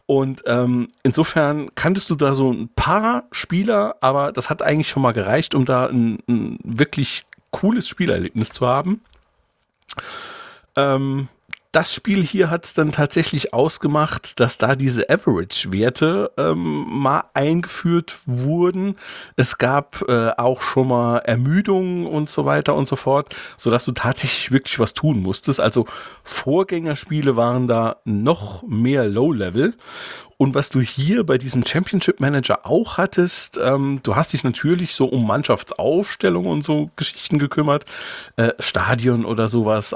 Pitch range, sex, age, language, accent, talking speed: 120-155 Hz, male, 40-59, German, German, 145 wpm